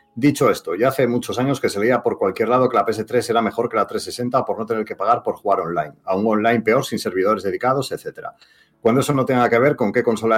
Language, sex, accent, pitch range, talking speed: Spanish, male, Spanish, 105-130 Hz, 255 wpm